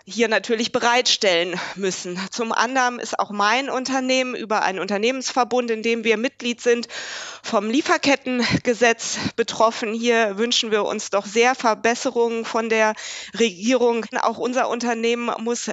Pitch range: 210-245 Hz